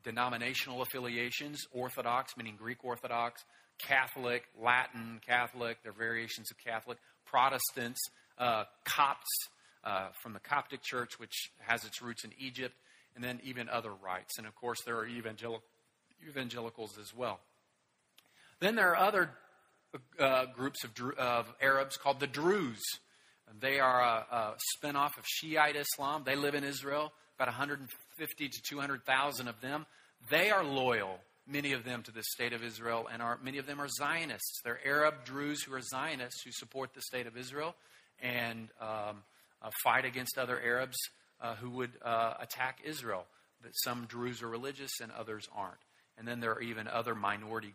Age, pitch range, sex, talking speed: 40-59, 115-135 Hz, male, 165 wpm